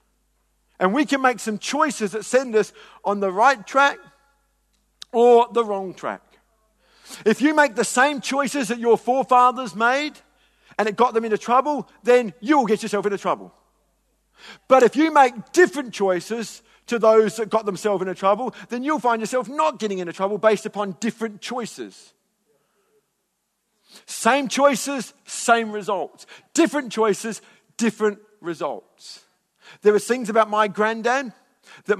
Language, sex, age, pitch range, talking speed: English, male, 50-69, 190-245 Hz, 150 wpm